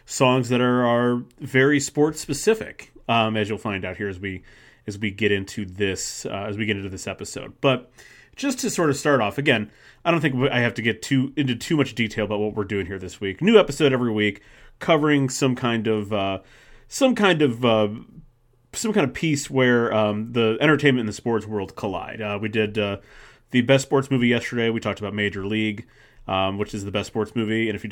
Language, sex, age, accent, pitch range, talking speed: English, male, 30-49, American, 105-130 Hz, 225 wpm